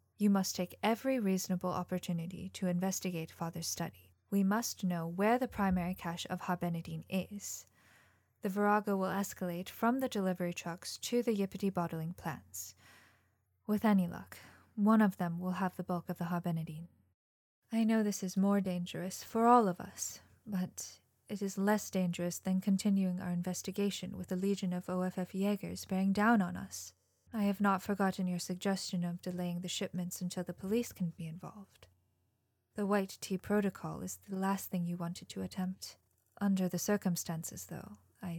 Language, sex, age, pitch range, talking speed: English, female, 10-29, 170-200 Hz, 170 wpm